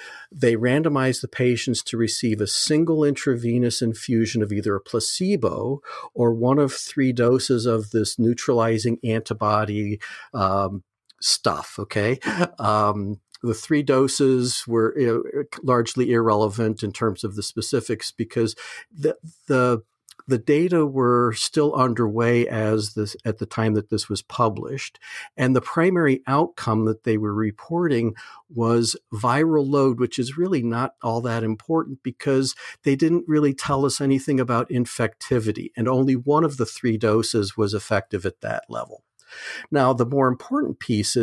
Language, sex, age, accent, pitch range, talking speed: English, male, 50-69, American, 110-135 Hz, 145 wpm